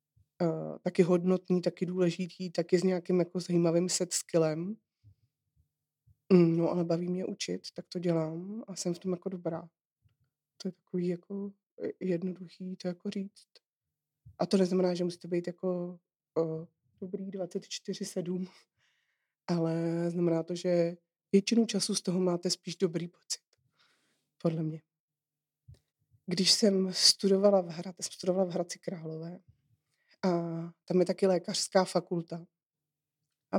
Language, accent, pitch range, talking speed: Czech, native, 170-190 Hz, 125 wpm